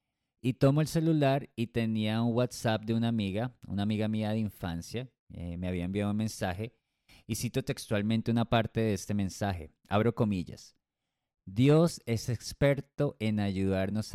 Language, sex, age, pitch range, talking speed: Spanish, male, 30-49, 95-115 Hz, 155 wpm